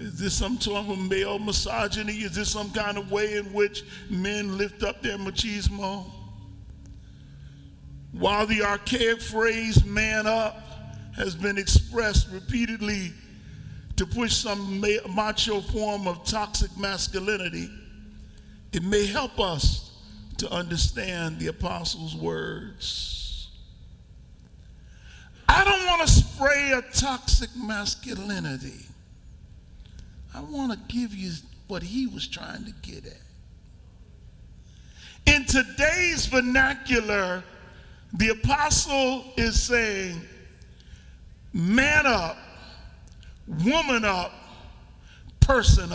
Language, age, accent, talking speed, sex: English, 50-69, American, 105 wpm, male